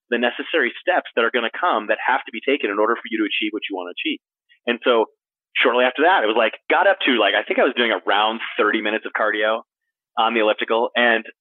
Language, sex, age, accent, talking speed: English, male, 30-49, American, 265 wpm